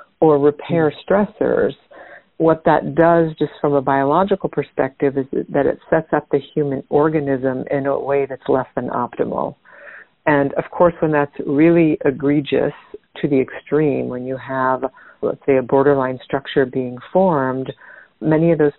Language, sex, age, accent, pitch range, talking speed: English, female, 60-79, American, 135-155 Hz, 155 wpm